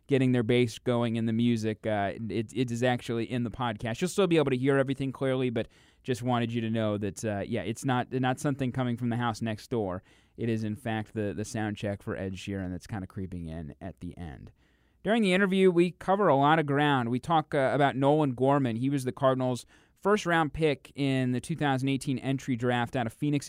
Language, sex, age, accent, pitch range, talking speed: English, male, 30-49, American, 115-140 Hz, 230 wpm